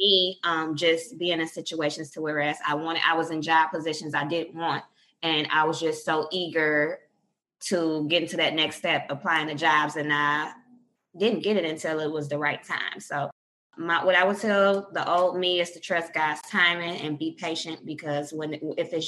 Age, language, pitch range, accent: 20-39, English, 155-180 Hz, American